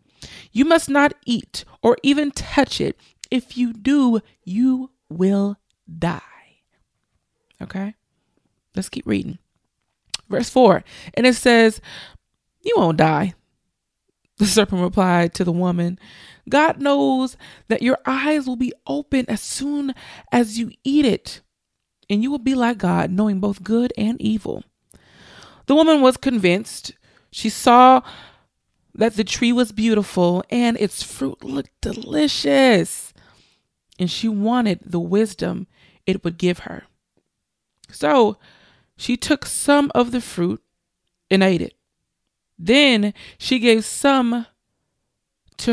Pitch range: 190-260 Hz